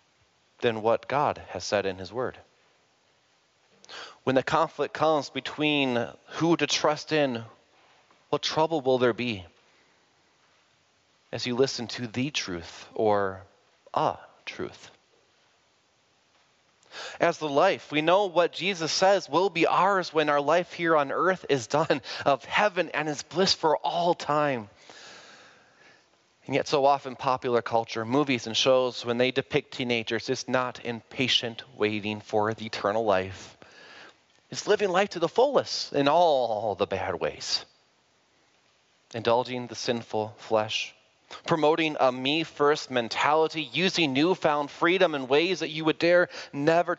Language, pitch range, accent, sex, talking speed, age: English, 115-155 Hz, American, male, 140 wpm, 30-49